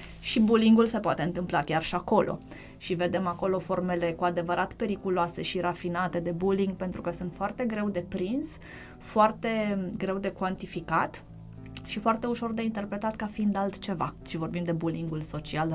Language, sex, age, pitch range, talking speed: Romanian, female, 20-39, 170-190 Hz, 165 wpm